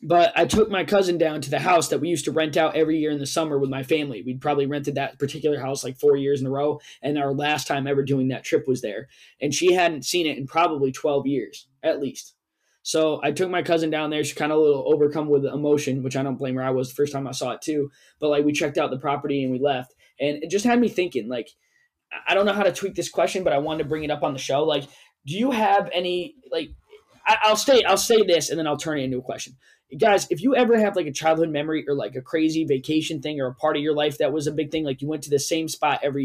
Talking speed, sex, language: 290 wpm, male, English